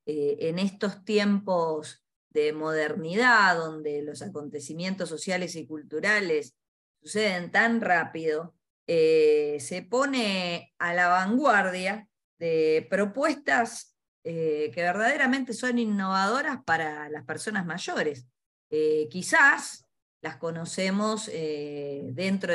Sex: female